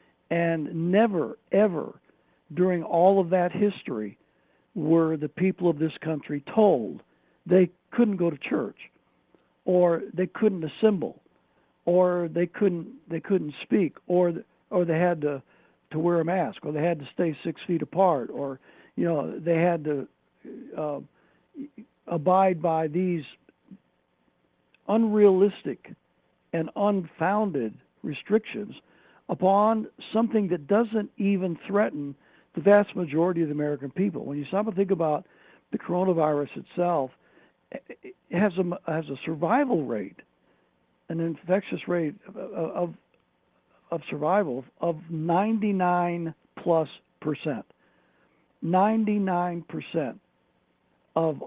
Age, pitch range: 60-79, 160-195 Hz